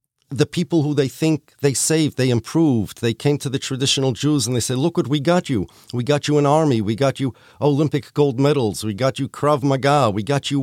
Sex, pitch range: male, 120-155 Hz